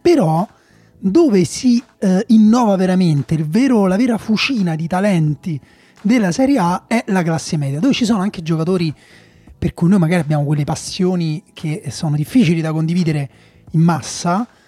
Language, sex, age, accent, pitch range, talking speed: Italian, male, 30-49, native, 150-185 Hz, 150 wpm